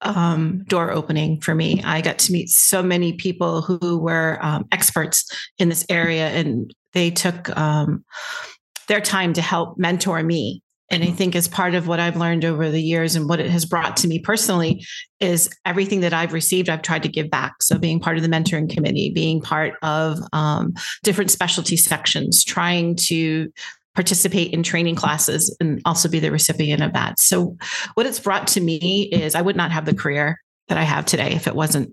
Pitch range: 160-185 Hz